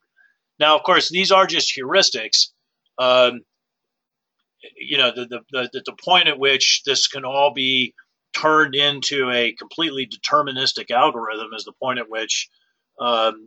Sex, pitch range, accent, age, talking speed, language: male, 115-140 Hz, American, 40-59, 145 wpm, English